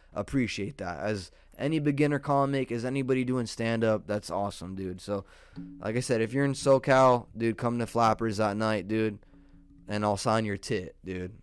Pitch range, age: 95-120 Hz, 20-39